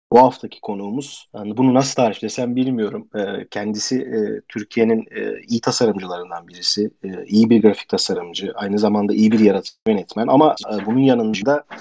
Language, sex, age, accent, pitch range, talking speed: Turkish, male, 40-59, native, 105-125 Hz, 165 wpm